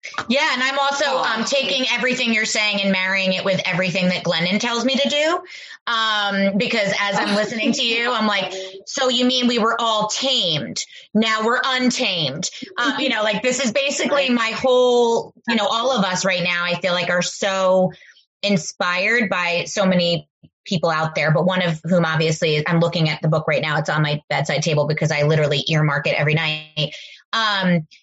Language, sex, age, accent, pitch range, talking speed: English, female, 30-49, American, 175-220 Hz, 200 wpm